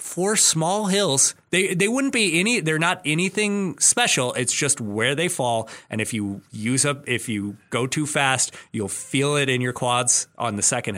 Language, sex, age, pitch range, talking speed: English, male, 20-39, 120-150 Hz, 195 wpm